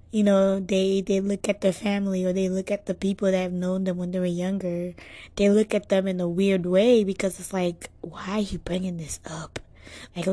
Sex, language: female, English